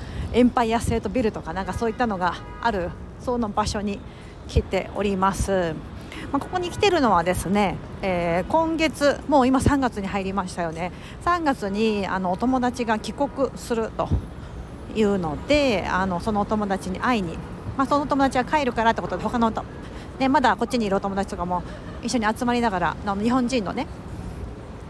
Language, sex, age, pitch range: Japanese, female, 50-69, 190-250 Hz